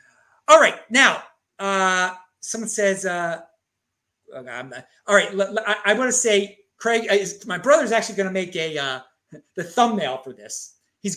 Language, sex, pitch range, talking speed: English, male, 195-250 Hz, 165 wpm